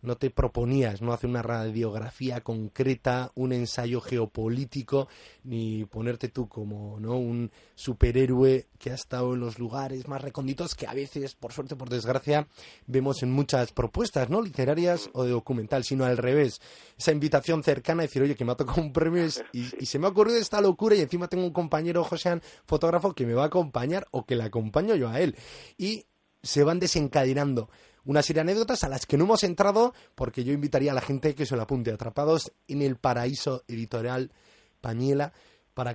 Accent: Spanish